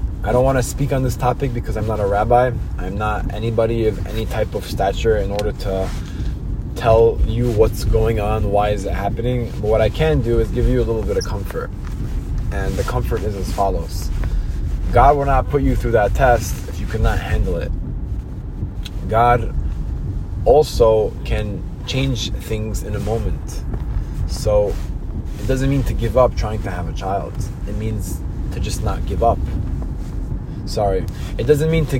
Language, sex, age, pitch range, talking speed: English, male, 20-39, 95-130 Hz, 180 wpm